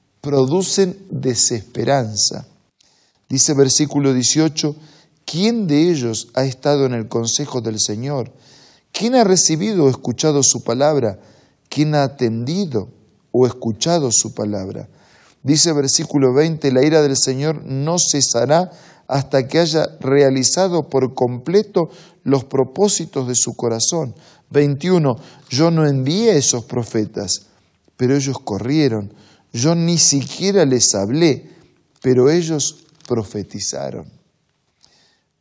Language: Spanish